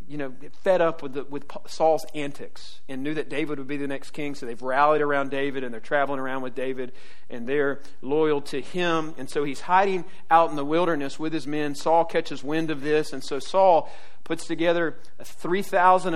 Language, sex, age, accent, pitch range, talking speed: English, male, 40-59, American, 145-175 Hz, 210 wpm